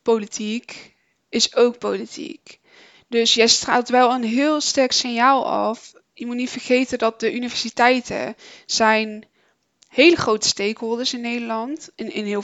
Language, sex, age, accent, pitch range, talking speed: Dutch, female, 20-39, Dutch, 220-255 Hz, 140 wpm